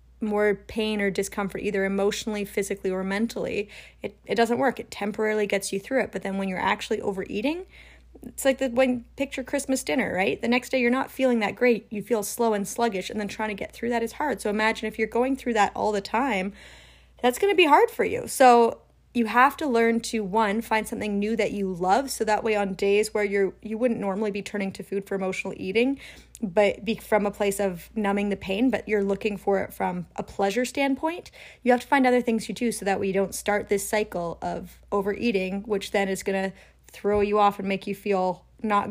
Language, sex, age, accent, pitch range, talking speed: English, female, 30-49, American, 195-235 Hz, 230 wpm